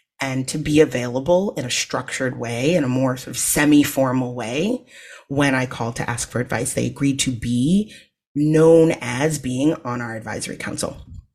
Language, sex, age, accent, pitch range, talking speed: English, female, 30-49, American, 130-165 Hz, 175 wpm